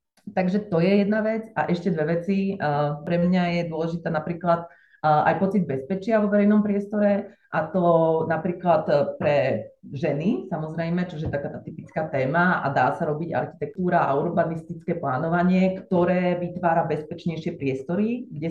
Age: 30-49